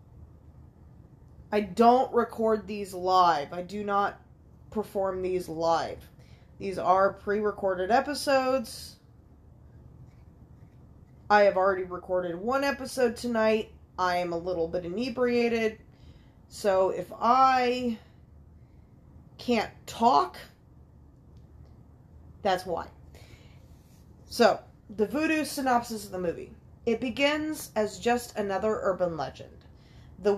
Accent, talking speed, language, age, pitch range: American, 100 wpm, English, 20-39, 190-245 Hz